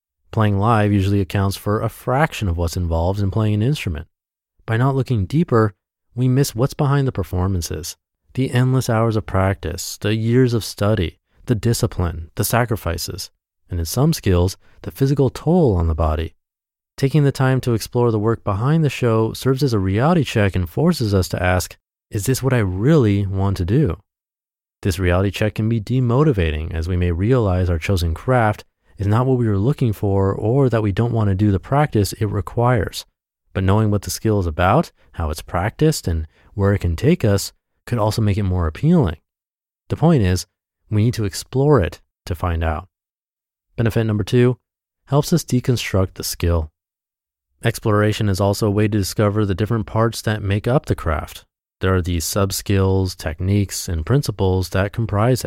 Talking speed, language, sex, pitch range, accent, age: 185 wpm, English, male, 90-120 Hz, American, 30-49